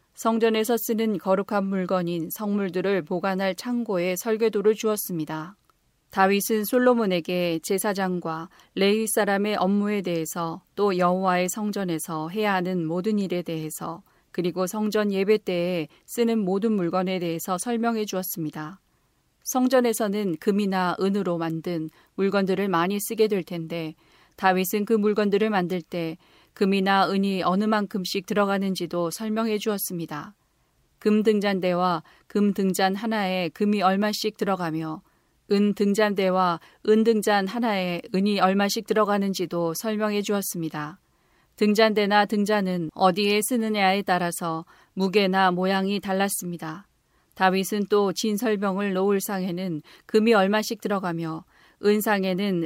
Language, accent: Korean, native